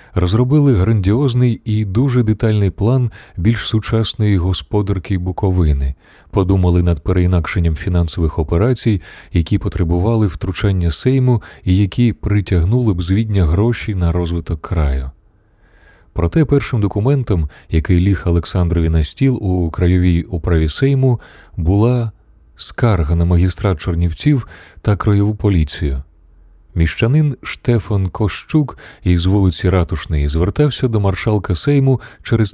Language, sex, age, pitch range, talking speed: Ukrainian, male, 30-49, 85-110 Hz, 110 wpm